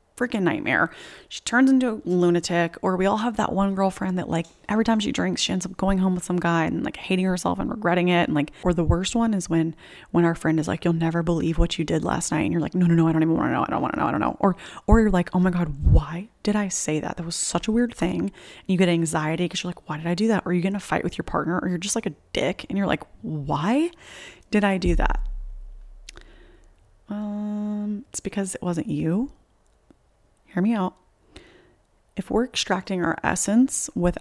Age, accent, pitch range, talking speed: 20-39, American, 170-200 Hz, 250 wpm